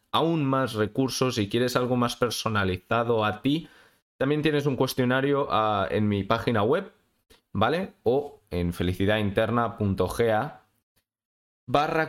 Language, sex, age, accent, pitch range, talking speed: Spanish, male, 20-39, Spanish, 100-140 Hz, 120 wpm